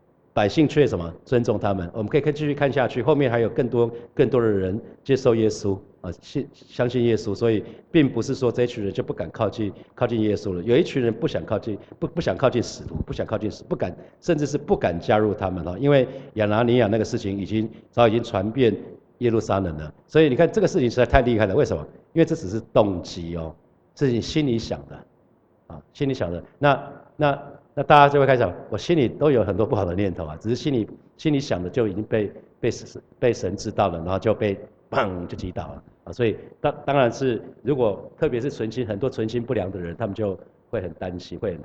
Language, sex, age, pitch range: Chinese, male, 50-69, 95-125 Hz